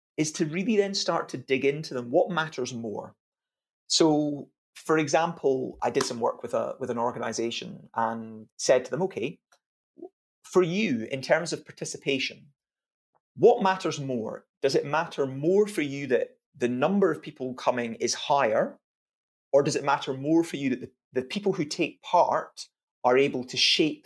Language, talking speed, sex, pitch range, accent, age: English, 175 wpm, male, 125-180 Hz, British, 30-49